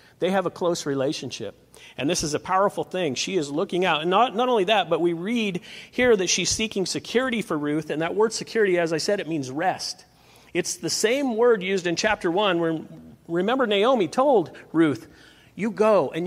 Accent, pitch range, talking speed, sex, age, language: American, 155-200 Hz, 205 wpm, male, 50-69, English